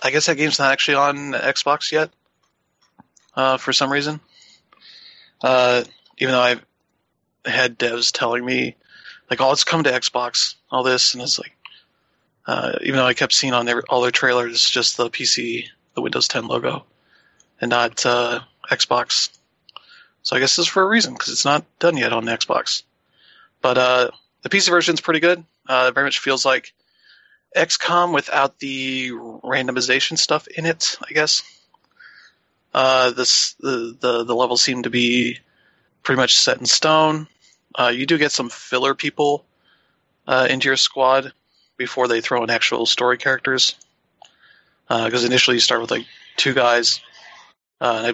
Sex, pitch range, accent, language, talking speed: male, 120-145 Hz, American, English, 165 wpm